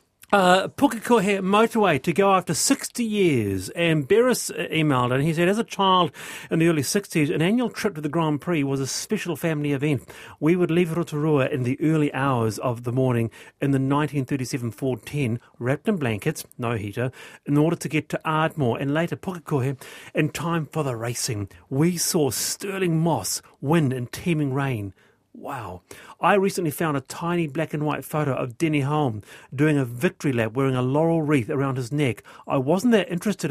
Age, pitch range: 40-59, 130-170 Hz